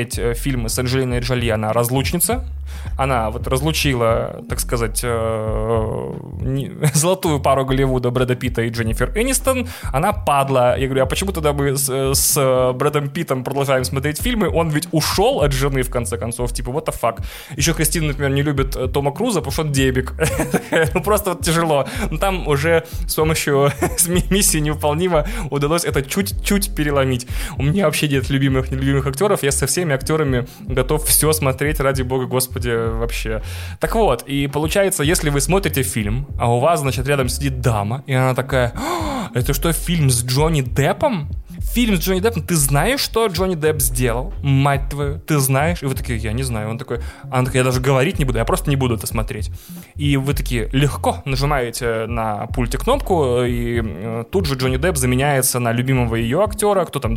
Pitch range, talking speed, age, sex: 125-155 Hz, 175 wpm, 20-39, male